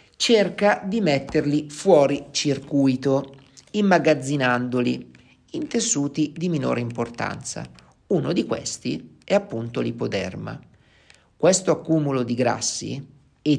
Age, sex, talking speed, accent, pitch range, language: 50-69, male, 95 wpm, native, 120-155 Hz, Italian